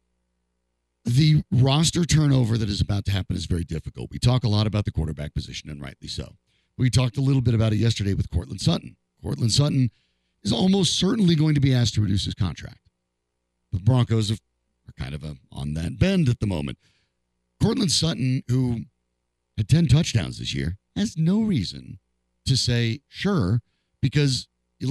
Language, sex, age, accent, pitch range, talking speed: English, male, 50-69, American, 90-145 Hz, 175 wpm